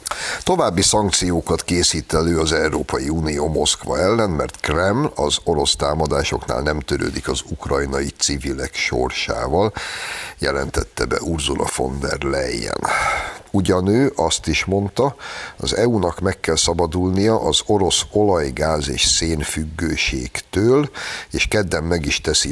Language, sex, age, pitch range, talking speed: Hungarian, male, 60-79, 70-85 Hz, 120 wpm